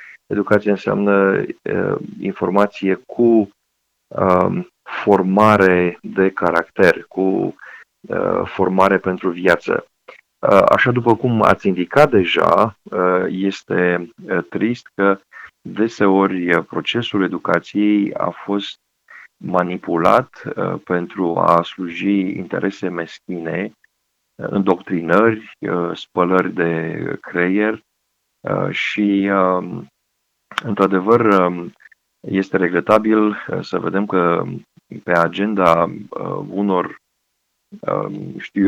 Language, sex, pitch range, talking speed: Romanian, male, 90-100 Hz, 90 wpm